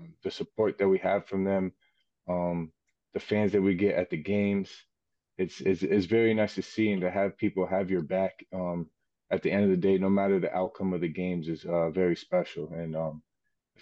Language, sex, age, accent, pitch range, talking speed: English, male, 20-39, American, 90-105 Hz, 220 wpm